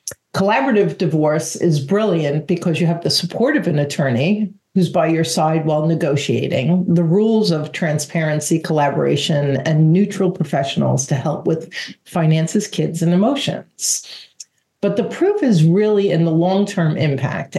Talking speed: 145 wpm